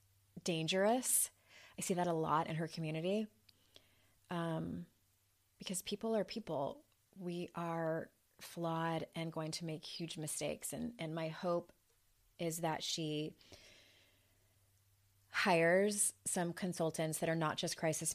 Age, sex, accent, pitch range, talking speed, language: 20-39, female, American, 145-170 Hz, 125 wpm, English